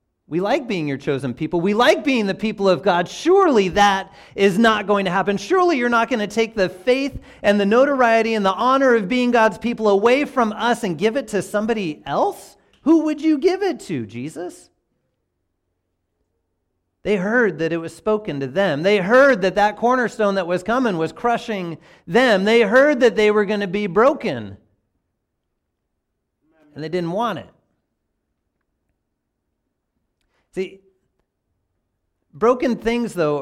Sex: male